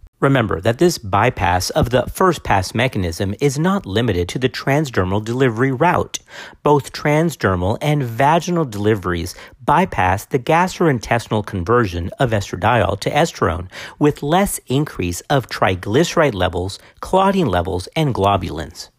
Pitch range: 100-155 Hz